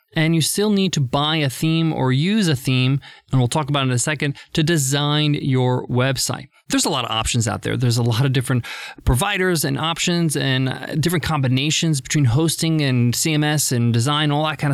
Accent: American